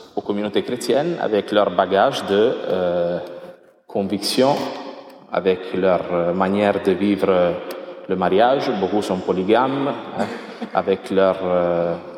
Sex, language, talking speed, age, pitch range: male, French, 110 wpm, 30-49, 100-135 Hz